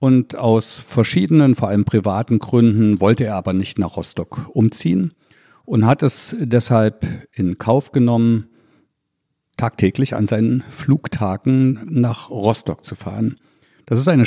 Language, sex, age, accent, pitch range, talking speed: German, male, 50-69, German, 105-140 Hz, 135 wpm